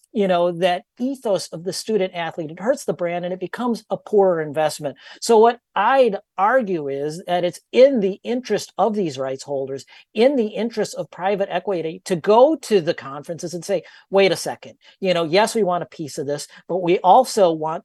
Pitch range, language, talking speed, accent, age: 160-195 Hz, English, 200 wpm, American, 40-59